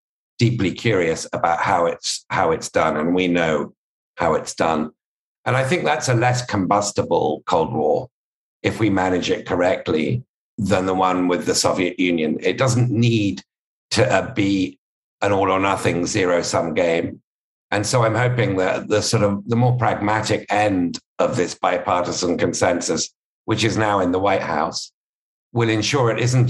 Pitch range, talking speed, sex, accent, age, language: 95-115 Hz, 170 wpm, male, British, 50-69, English